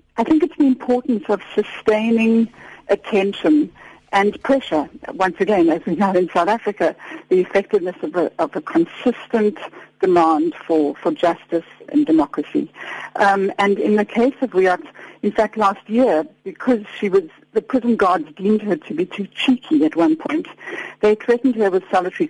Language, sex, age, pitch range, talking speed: English, female, 60-79, 185-240 Hz, 165 wpm